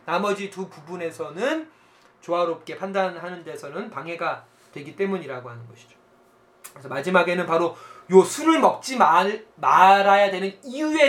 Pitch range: 175-255 Hz